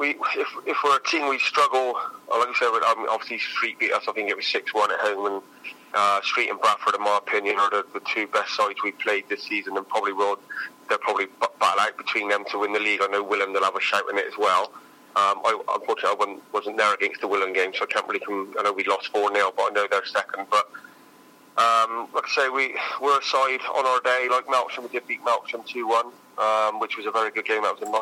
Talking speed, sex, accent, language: 250 wpm, male, British, English